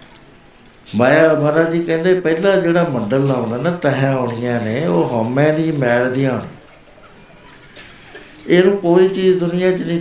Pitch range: 115-155 Hz